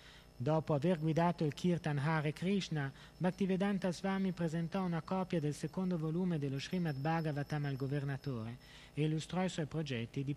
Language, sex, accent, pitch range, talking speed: Italian, male, native, 130-165 Hz, 150 wpm